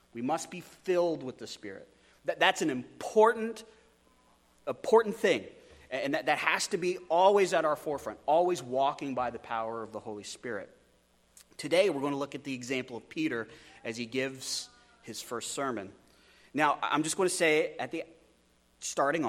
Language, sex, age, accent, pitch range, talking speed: English, male, 30-49, American, 120-160 Hz, 175 wpm